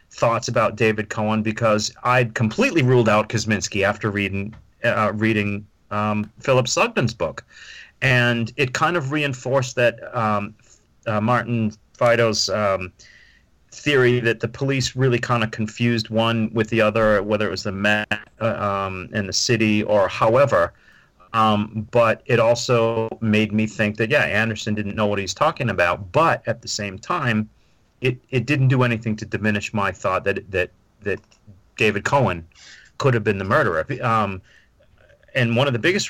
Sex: male